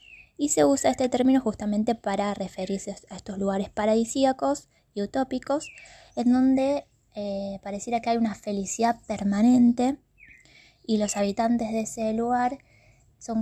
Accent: Argentinian